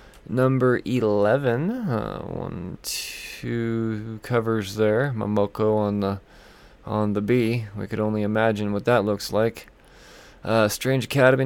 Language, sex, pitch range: English, male, 105-130 Hz